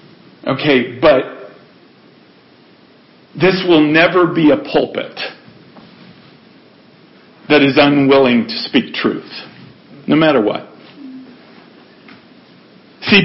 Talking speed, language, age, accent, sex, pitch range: 80 wpm, English, 50-69, American, male, 135-175 Hz